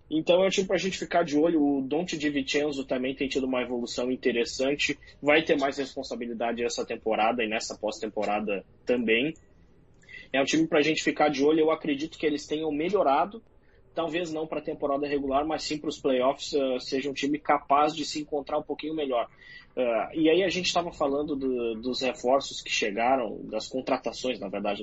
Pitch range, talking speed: 125-155 Hz, 195 wpm